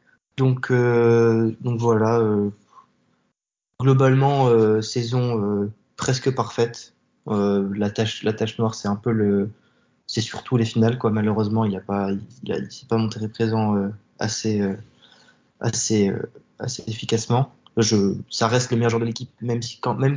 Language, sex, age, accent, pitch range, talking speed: French, male, 20-39, French, 110-125 Hz, 160 wpm